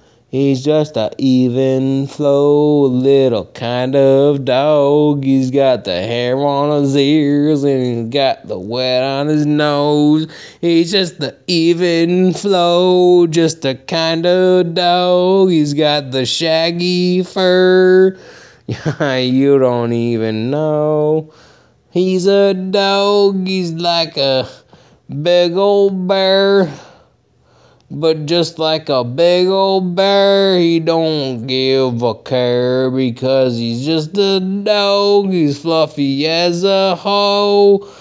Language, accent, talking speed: English, American, 115 wpm